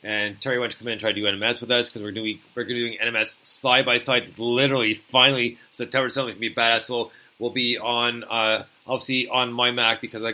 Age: 30-49